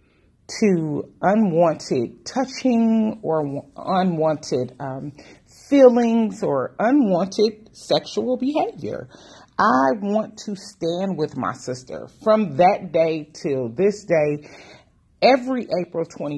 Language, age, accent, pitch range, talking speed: English, 40-59, American, 145-230 Hz, 95 wpm